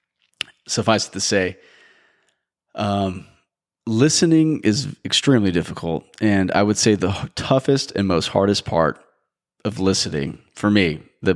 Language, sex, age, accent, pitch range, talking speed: English, male, 30-49, American, 90-110 Hz, 125 wpm